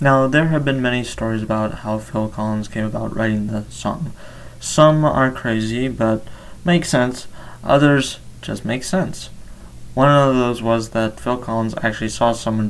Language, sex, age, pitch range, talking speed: English, male, 20-39, 110-125 Hz, 165 wpm